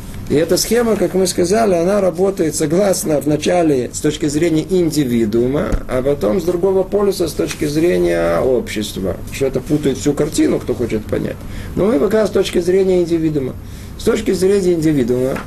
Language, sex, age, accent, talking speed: Russian, male, 50-69, native, 165 wpm